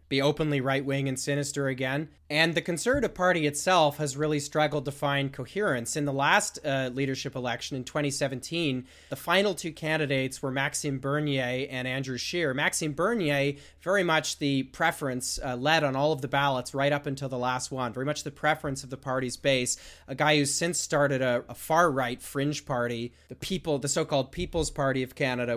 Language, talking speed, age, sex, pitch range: English, 190 wpm, 30-49, male, 125-145 Hz